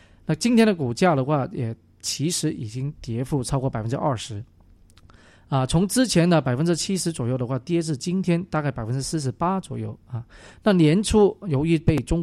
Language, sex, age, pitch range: Chinese, male, 20-39, 125-160 Hz